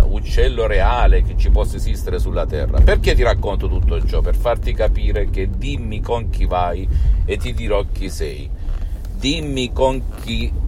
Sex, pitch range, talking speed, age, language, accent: male, 80-115 Hz, 165 wpm, 50-69, Italian, native